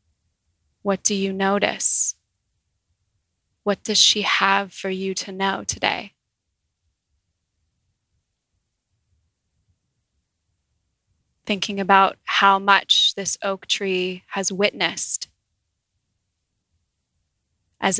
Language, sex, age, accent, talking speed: English, female, 20-39, American, 75 wpm